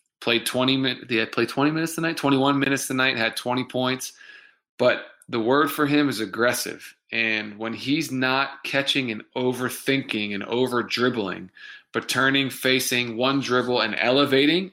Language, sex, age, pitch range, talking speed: English, male, 20-39, 115-130 Hz, 160 wpm